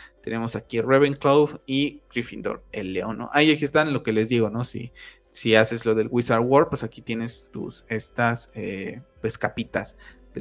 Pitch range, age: 115-135 Hz, 20-39